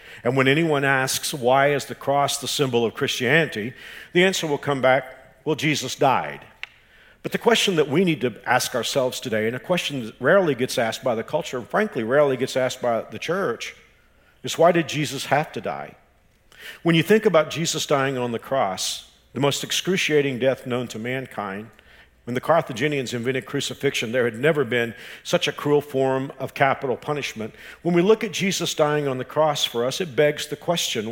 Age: 50-69